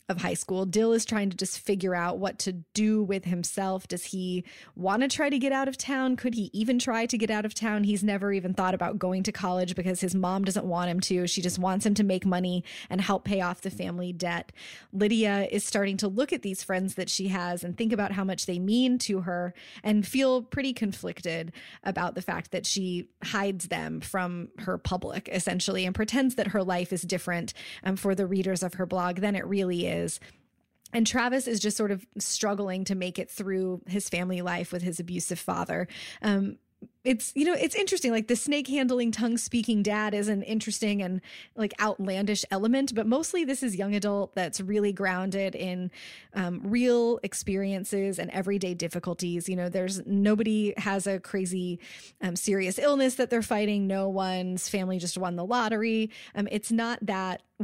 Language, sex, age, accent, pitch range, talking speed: English, female, 20-39, American, 185-215 Hz, 200 wpm